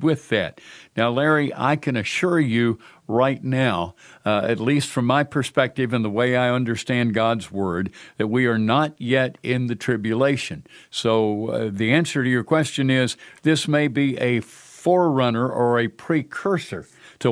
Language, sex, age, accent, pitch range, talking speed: English, male, 60-79, American, 110-135 Hz, 165 wpm